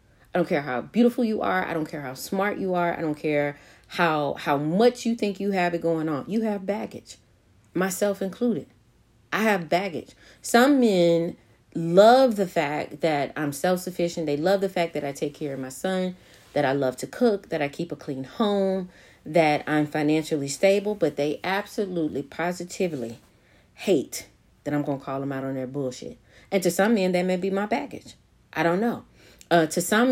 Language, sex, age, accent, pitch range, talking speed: English, female, 30-49, American, 145-190 Hz, 195 wpm